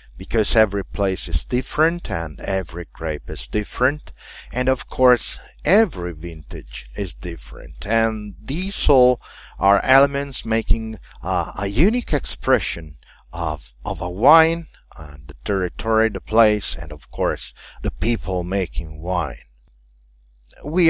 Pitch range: 80-115 Hz